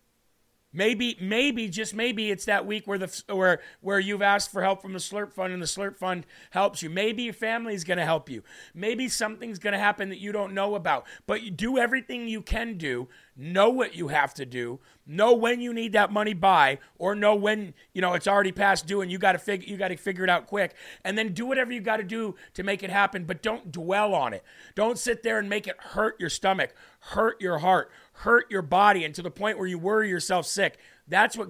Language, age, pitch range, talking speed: English, 40-59, 185-220 Hz, 240 wpm